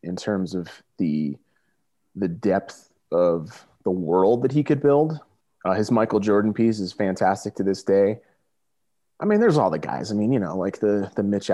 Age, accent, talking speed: 30-49, American, 195 wpm